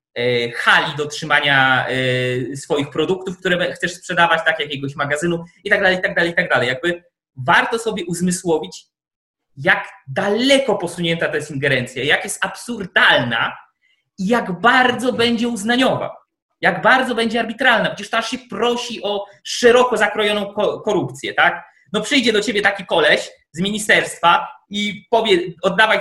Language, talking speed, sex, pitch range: Polish, 145 wpm, male, 165-215 Hz